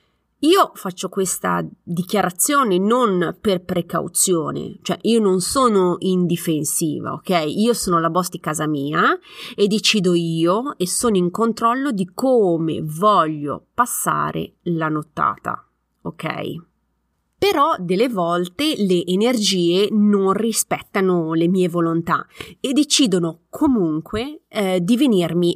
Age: 30-49